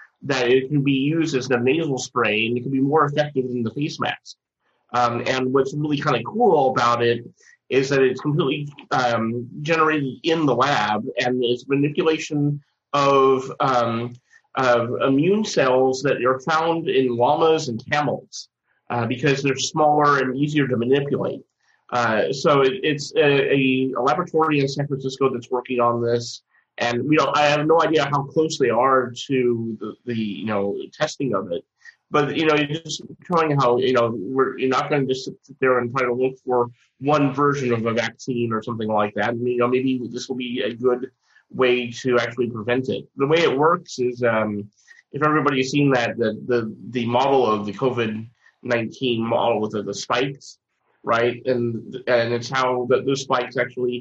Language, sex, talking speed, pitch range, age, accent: English, male, 190 wpm, 120-145 Hz, 30-49, American